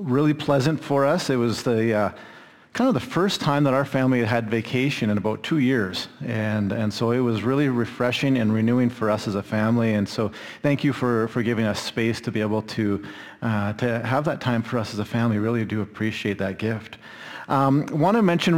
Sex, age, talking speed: male, 40-59, 225 wpm